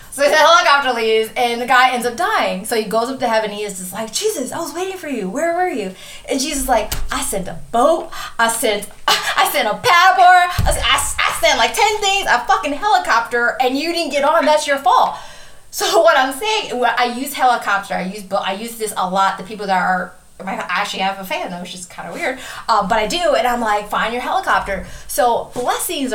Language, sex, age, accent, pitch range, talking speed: English, female, 20-39, American, 195-285 Hz, 240 wpm